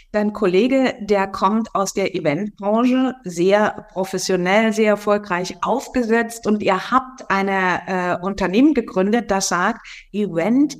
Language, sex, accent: German, female, German